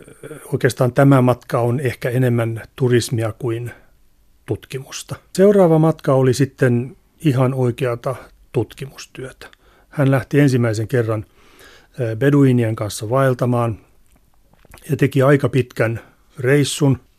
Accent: native